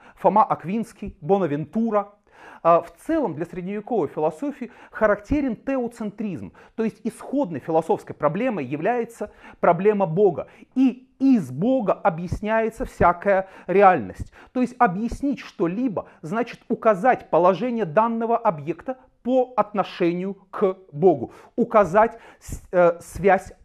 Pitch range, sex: 175-230 Hz, male